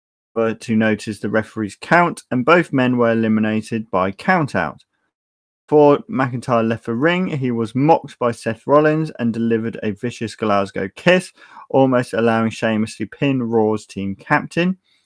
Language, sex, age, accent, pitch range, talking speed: English, male, 20-39, British, 115-155 Hz, 150 wpm